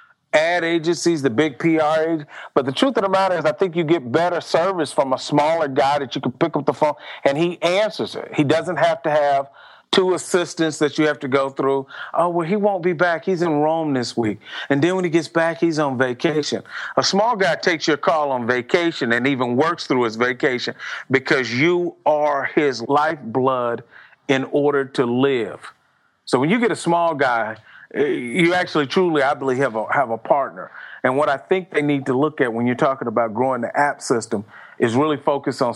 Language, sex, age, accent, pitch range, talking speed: English, male, 40-59, American, 120-160 Hz, 215 wpm